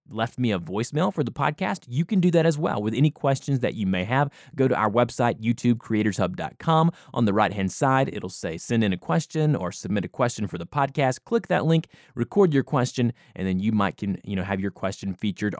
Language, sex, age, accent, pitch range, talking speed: English, male, 20-39, American, 110-160 Hz, 225 wpm